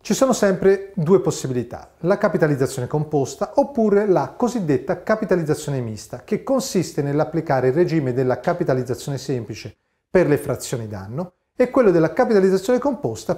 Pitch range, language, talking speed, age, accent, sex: 130-205 Hz, Italian, 135 wpm, 40-59, native, male